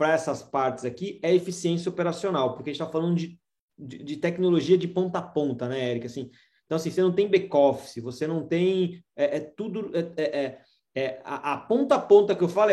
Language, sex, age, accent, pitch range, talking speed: Portuguese, male, 20-39, Brazilian, 145-190 Hz, 220 wpm